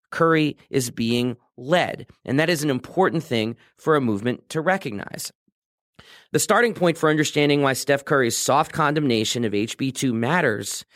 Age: 40-59